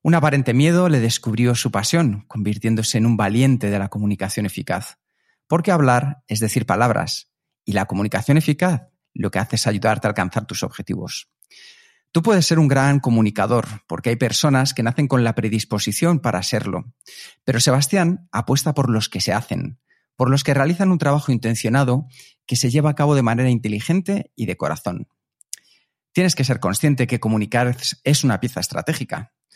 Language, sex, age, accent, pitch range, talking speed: Spanish, male, 40-59, Spanish, 110-145 Hz, 175 wpm